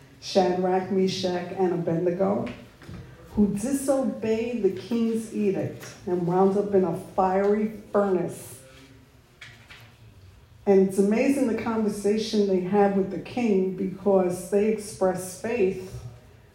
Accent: American